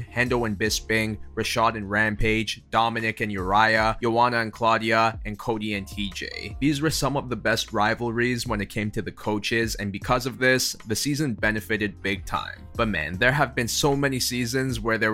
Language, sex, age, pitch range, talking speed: English, male, 20-39, 105-125 Hz, 190 wpm